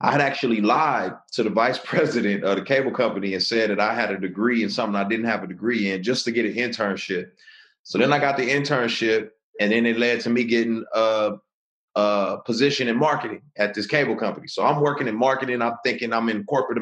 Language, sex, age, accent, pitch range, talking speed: English, male, 30-49, American, 110-145 Hz, 230 wpm